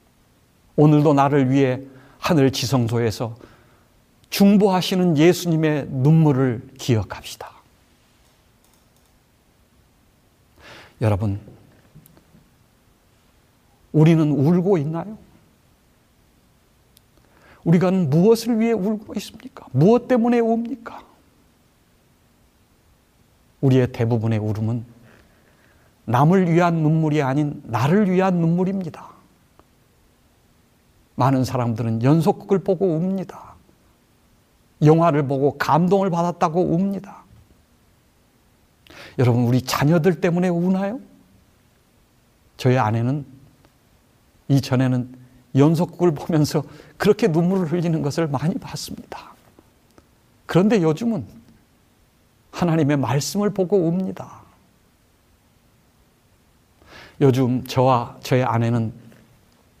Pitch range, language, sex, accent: 125-185 Hz, Korean, male, native